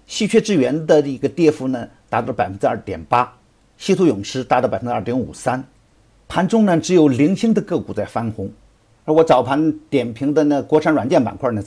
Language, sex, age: Chinese, male, 50-69